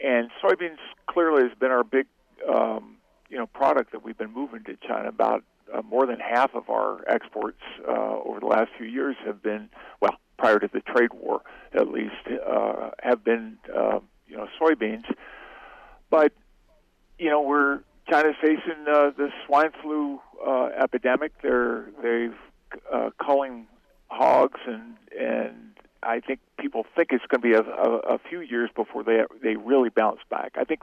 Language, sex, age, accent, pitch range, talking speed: English, male, 50-69, American, 120-155 Hz, 170 wpm